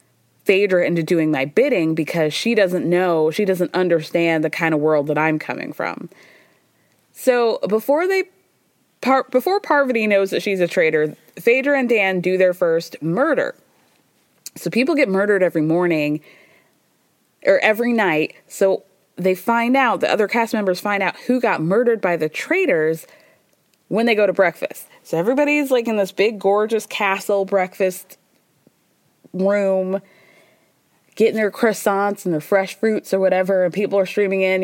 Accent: American